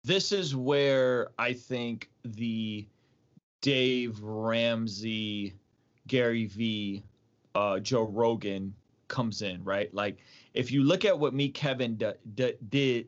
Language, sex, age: English, male, 30-49